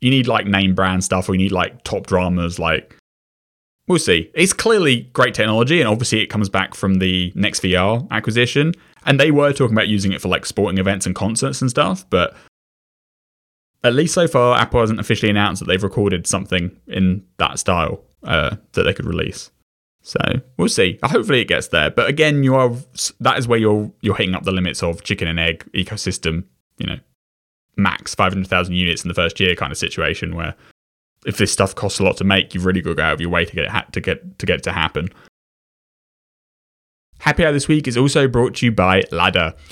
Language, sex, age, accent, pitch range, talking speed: English, male, 20-39, British, 90-125 Hz, 220 wpm